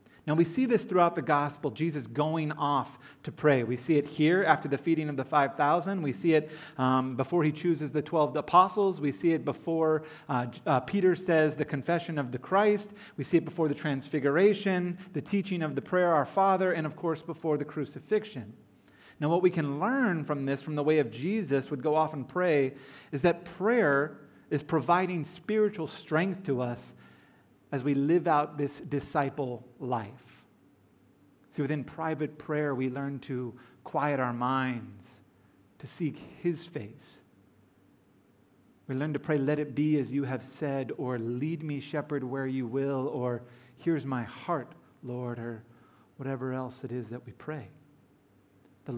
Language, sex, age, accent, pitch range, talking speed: English, male, 30-49, American, 130-160 Hz, 175 wpm